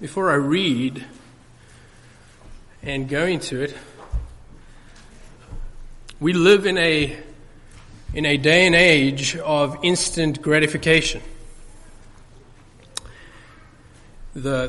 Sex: male